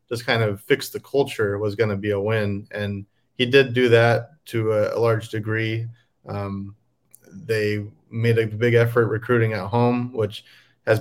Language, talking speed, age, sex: English, 180 wpm, 30-49, male